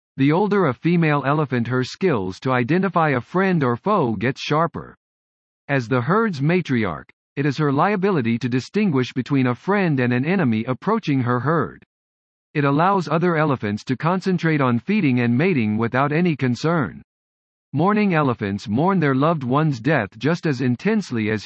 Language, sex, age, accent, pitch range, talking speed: English, male, 50-69, American, 125-175 Hz, 160 wpm